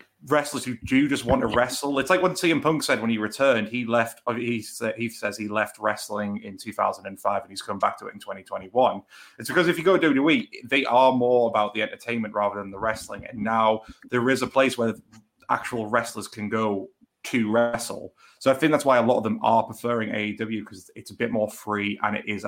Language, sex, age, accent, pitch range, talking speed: English, male, 20-39, British, 110-140 Hz, 225 wpm